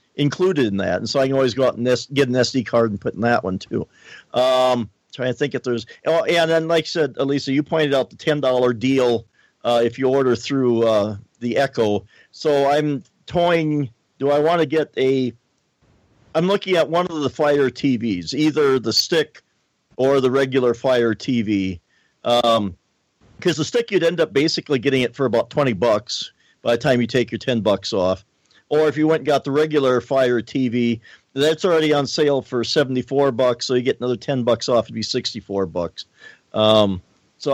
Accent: American